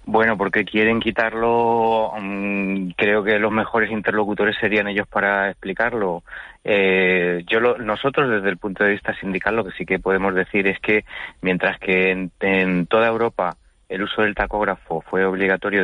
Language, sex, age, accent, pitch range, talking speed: Spanish, male, 30-49, Spanish, 90-100 Hz, 165 wpm